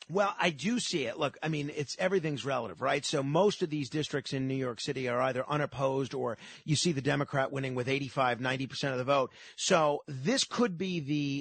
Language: English